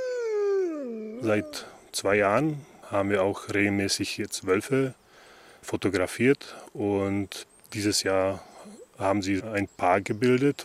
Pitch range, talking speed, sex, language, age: 95-110 Hz, 100 wpm, male, German, 20-39